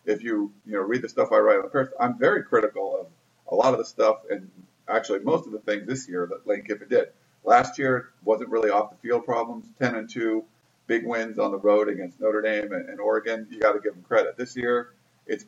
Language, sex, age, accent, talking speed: English, male, 50-69, American, 240 wpm